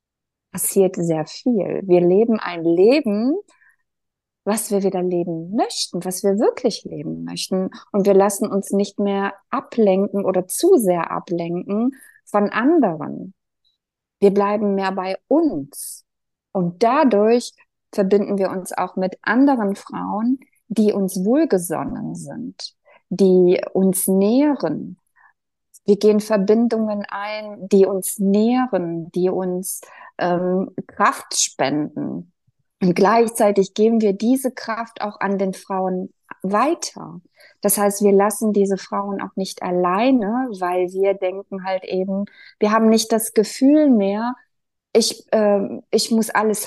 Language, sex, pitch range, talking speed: German, female, 190-225 Hz, 125 wpm